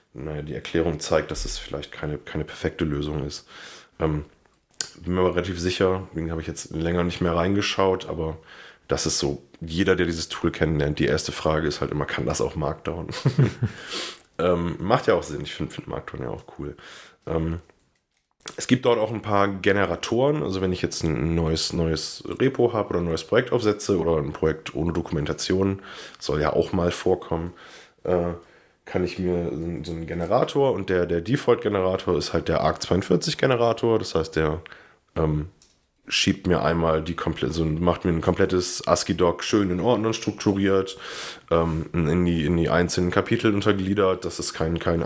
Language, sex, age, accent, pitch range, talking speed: German, male, 30-49, German, 80-95 Hz, 180 wpm